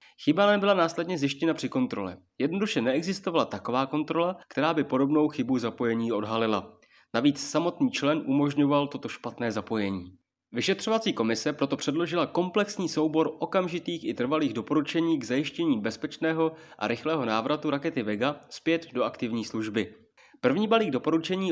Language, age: Czech, 30-49